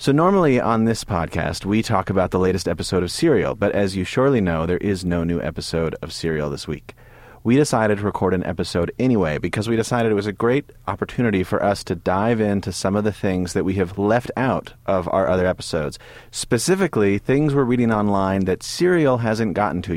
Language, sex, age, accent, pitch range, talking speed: English, male, 30-49, American, 90-120 Hz, 210 wpm